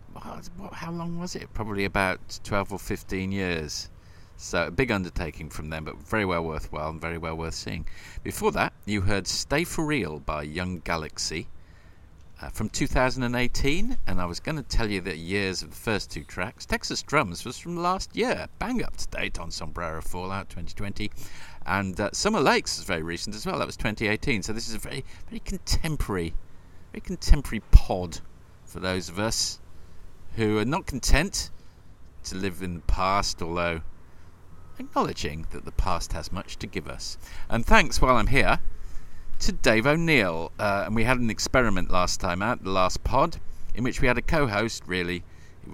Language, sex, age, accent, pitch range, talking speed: English, male, 50-69, British, 85-110 Hz, 180 wpm